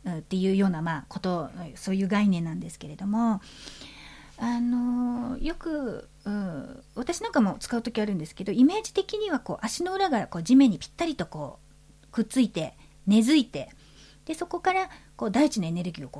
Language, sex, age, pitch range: Japanese, female, 40-59, 170-260 Hz